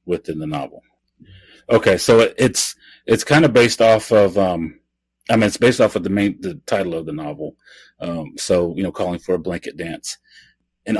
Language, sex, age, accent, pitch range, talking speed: English, male, 30-49, American, 85-100 Hz, 200 wpm